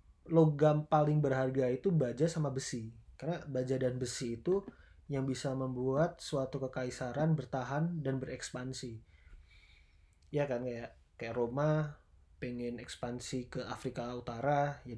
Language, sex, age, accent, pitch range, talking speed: Indonesian, male, 20-39, native, 115-150 Hz, 120 wpm